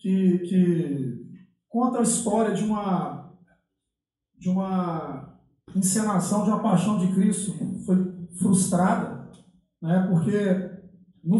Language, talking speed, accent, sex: Portuguese, 105 wpm, Brazilian, male